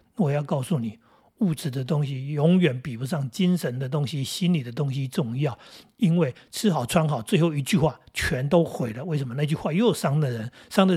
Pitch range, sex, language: 135-185 Hz, male, Chinese